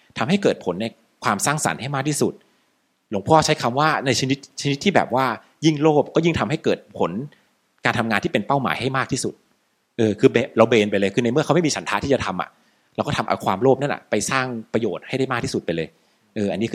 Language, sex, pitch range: Thai, male, 100-145 Hz